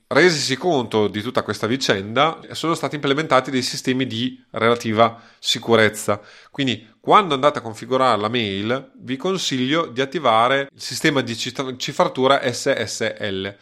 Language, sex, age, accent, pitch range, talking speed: Italian, male, 30-49, native, 110-140 Hz, 130 wpm